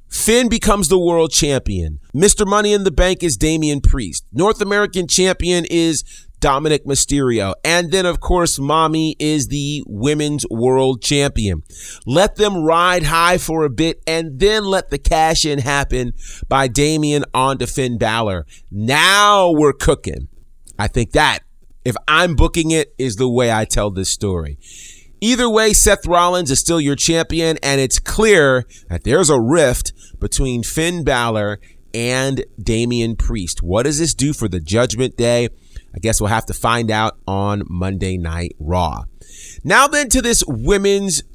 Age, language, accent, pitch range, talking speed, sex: 30-49, English, American, 110-170 Hz, 160 wpm, male